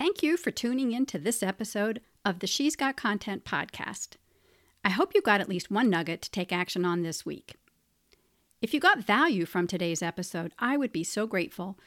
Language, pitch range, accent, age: English, 185-270 Hz, American, 50-69